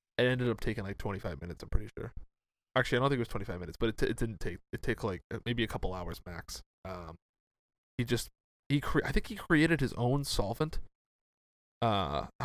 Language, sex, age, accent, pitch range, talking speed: English, male, 20-39, American, 105-130 Hz, 215 wpm